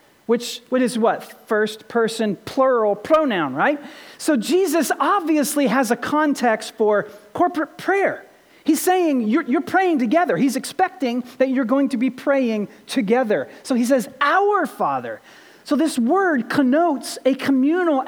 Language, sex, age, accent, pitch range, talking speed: English, male, 40-59, American, 225-315 Hz, 145 wpm